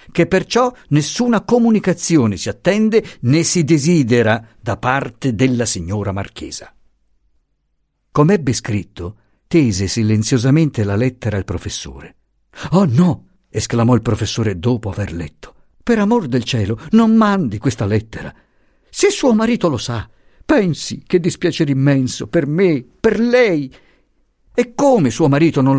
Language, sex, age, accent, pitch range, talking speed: Italian, male, 50-69, native, 100-150 Hz, 135 wpm